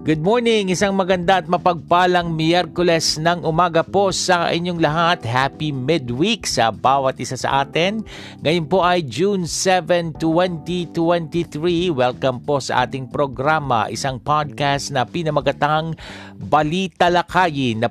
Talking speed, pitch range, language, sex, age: 120 wpm, 120-160 Hz, Filipino, male, 50-69